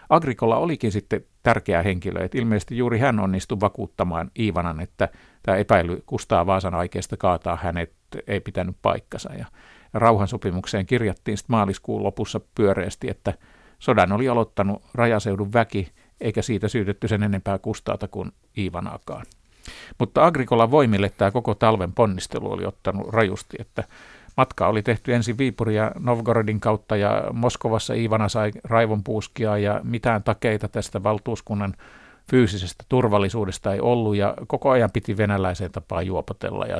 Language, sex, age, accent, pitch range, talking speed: Finnish, male, 50-69, native, 100-115 Hz, 135 wpm